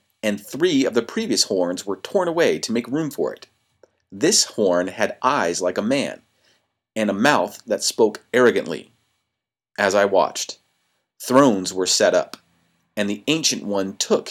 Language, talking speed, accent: English, 165 wpm, American